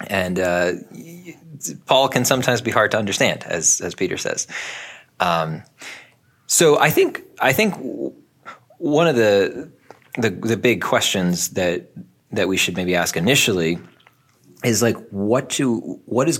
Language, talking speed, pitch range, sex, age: English, 145 wpm, 85-120 Hz, male, 20-39